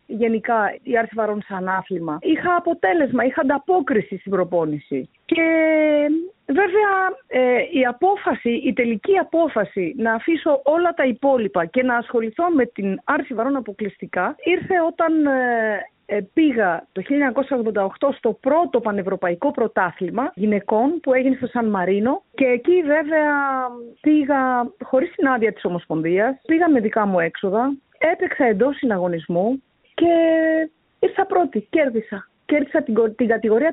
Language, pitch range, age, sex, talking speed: Greek, 220-320 Hz, 40-59, female, 125 wpm